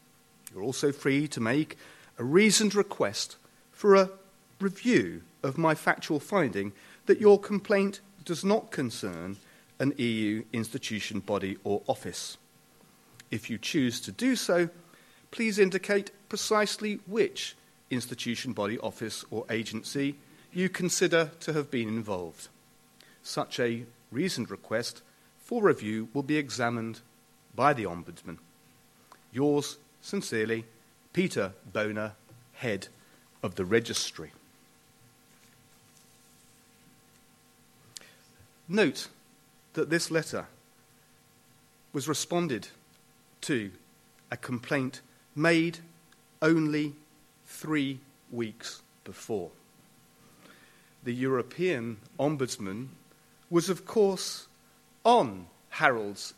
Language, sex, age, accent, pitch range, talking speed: English, male, 40-59, British, 115-180 Hz, 95 wpm